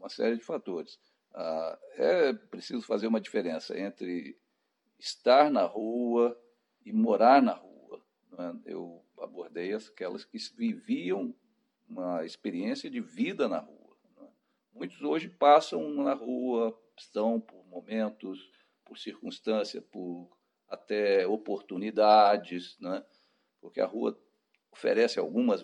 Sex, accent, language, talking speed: male, Brazilian, Portuguese, 110 wpm